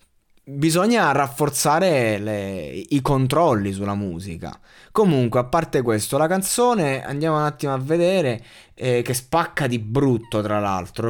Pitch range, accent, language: 110-160 Hz, native, Italian